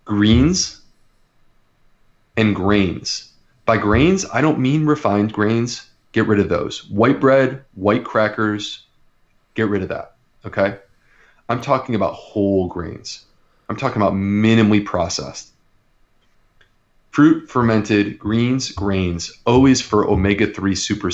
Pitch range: 95-115 Hz